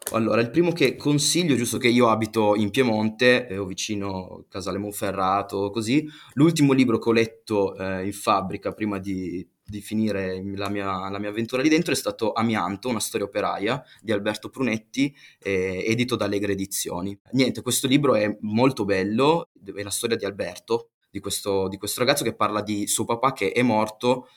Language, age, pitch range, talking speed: Italian, 20-39, 100-120 Hz, 180 wpm